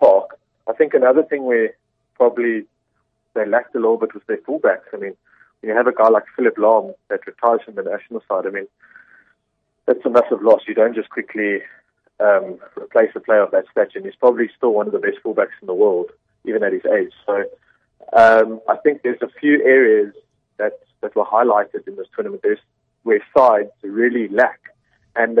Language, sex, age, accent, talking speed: English, male, 30-49, British, 200 wpm